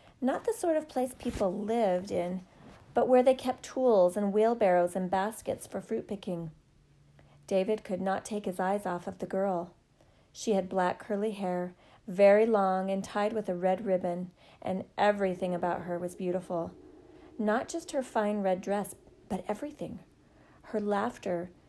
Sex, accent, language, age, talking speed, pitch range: female, American, English, 40-59, 165 wpm, 180-215 Hz